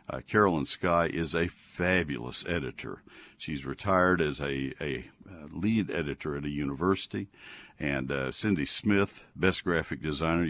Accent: American